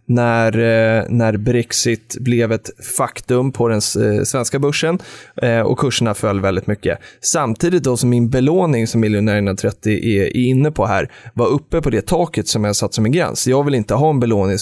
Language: Swedish